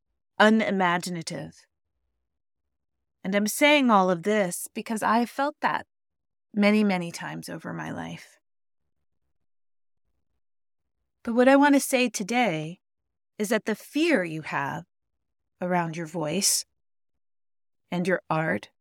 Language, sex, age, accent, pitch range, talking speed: English, female, 30-49, American, 155-210 Hz, 120 wpm